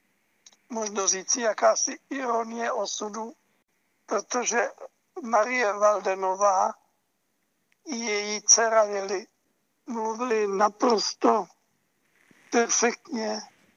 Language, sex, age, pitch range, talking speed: Czech, male, 60-79, 205-235 Hz, 65 wpm